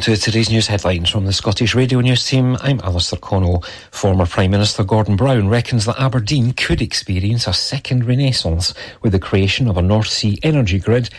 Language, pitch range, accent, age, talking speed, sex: English, 95-125 Hz, British, 40-59, 190 wpm, male